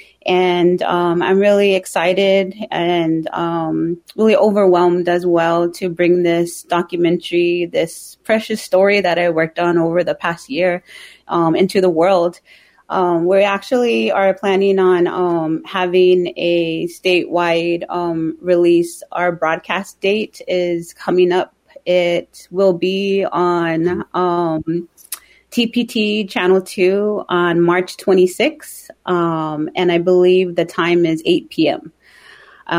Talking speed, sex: 125 wpm, female